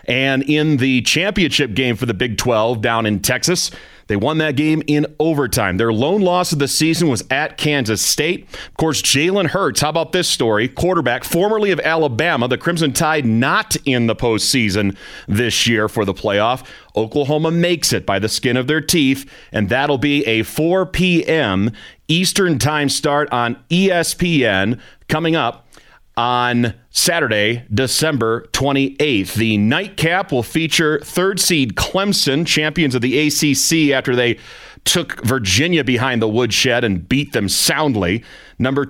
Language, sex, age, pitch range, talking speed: English, male, 30-49, 120-160 Hz, 155 wpm